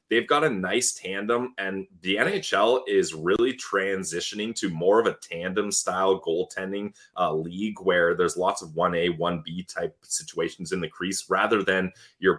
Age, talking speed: 20-39, 160 wpm